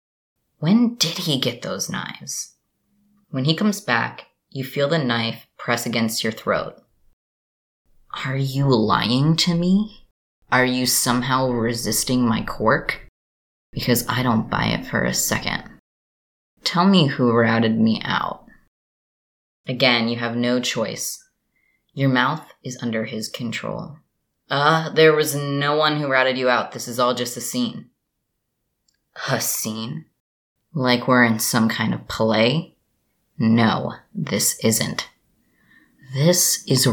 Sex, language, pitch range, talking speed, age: female, English, 115-140 Hz, 135 wpm, 20-39